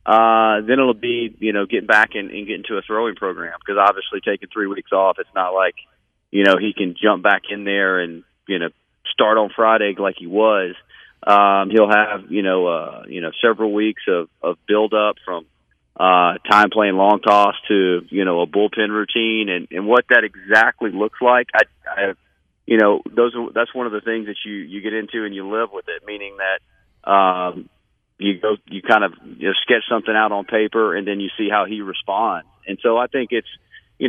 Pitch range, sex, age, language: 95-110 Hz, male, 40-59, English